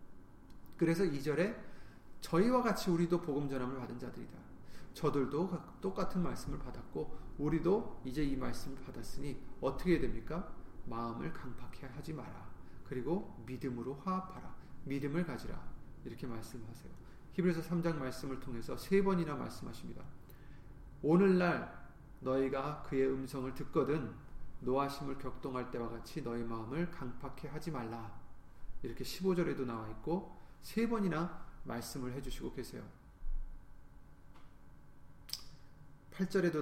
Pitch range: 125-165 Hz